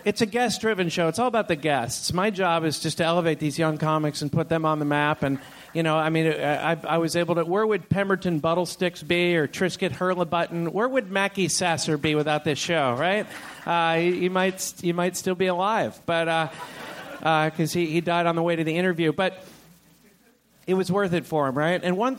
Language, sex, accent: English, male, American